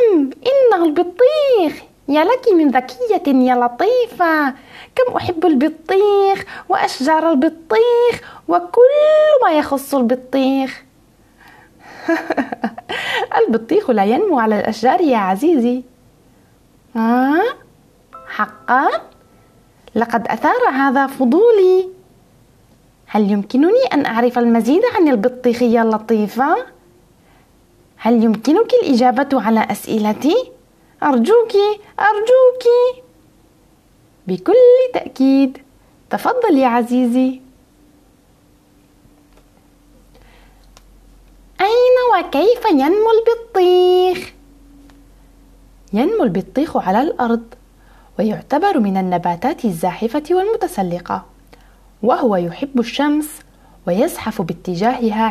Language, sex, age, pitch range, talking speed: Arabic, female, 20-39, 240-395 Hz, 75 wpm